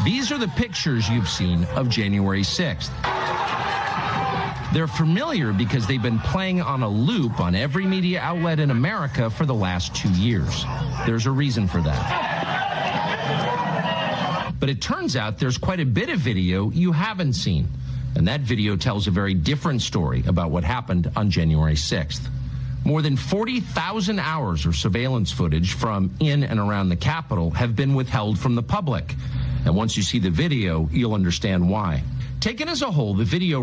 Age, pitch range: 50-69, 95-140 Hz